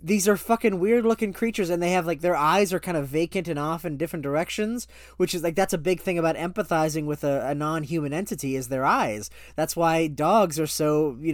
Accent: American